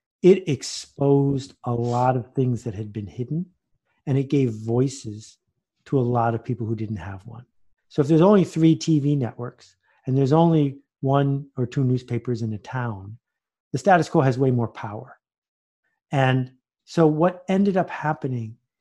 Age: 50-69